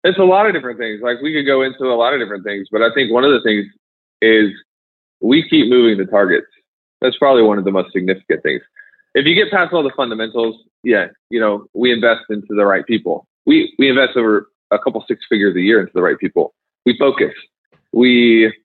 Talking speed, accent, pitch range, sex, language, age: 230 wpm, American, 105-135 Hz, male, English, 20-39